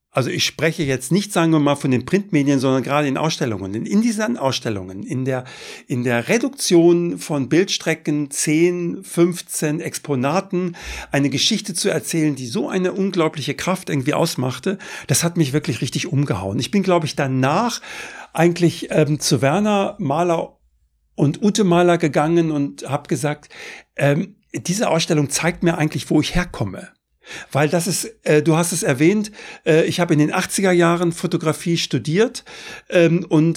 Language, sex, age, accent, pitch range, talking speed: German, male, 60-79, German, 140-175 Hz, 165 wpm